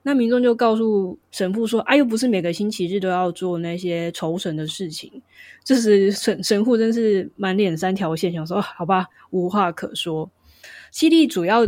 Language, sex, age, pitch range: Chinese, female, 20-39, 185-235 Hz